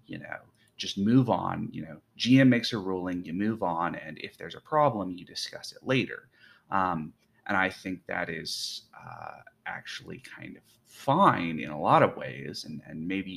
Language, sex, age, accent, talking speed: English, male, 30-49, American, 190 wpm